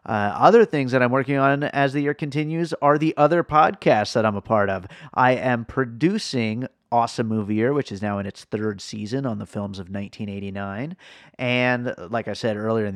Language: English